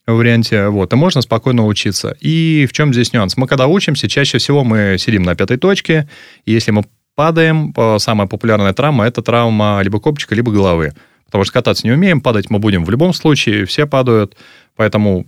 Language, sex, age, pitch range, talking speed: Russian, male, 20-39, 105-140 Hz, 195 wpm